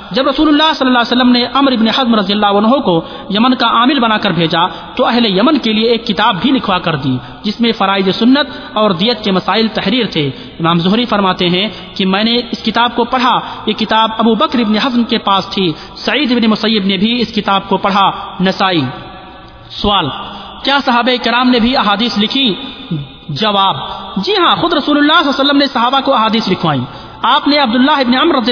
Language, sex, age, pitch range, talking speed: Urdu, male, 40-59, 190-240 Hz, 210 wpm